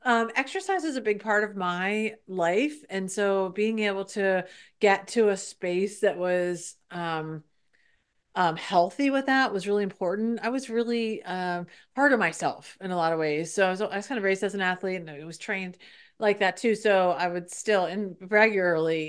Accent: American